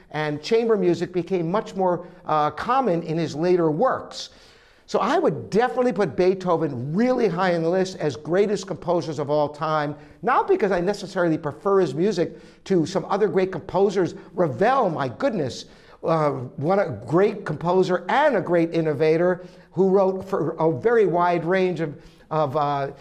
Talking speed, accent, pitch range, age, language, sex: 165 wpm, American, 170-215 Hz, 50-69, English, male